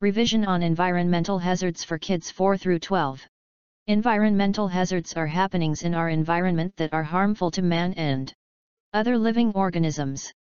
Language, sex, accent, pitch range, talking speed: English, female, American, 160-200 Hz, 135 wpm